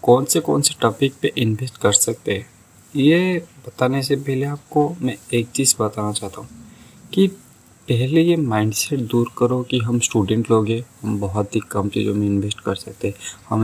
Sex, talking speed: male, 180 wpm